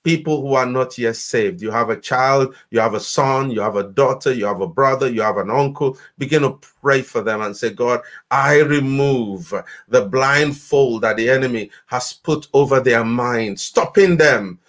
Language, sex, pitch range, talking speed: English, male, 120-145 Hz, 195 wpm